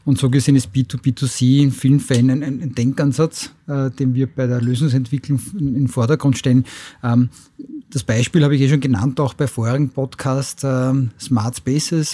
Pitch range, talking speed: 125-140 Hz, 185 wpm